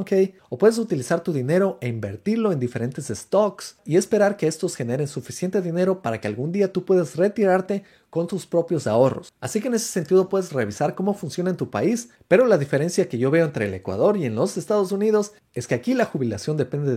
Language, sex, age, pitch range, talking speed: Spanish, male, 30-49, 130-195 Hz, 210 wpm